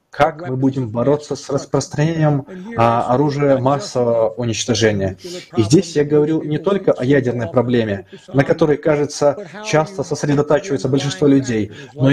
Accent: native